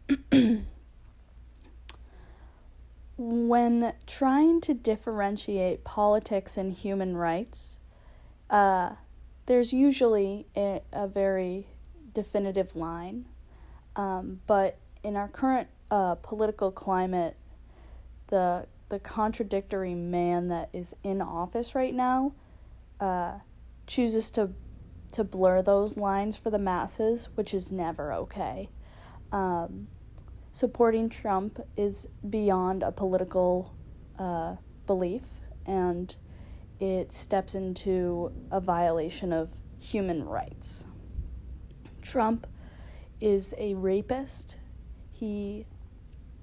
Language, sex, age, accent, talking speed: English, female, 10-29, American, 90 wpm